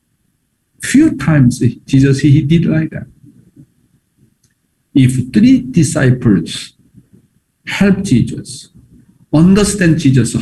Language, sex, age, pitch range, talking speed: English, male, 50-69, 130-190 Hz, 80 wpm